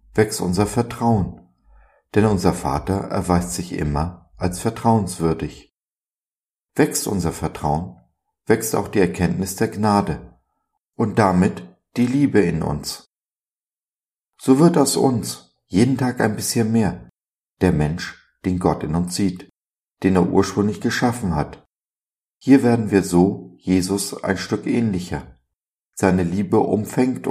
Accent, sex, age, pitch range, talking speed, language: German, male, 50-69, 85-110 Hz, 125 wpm, German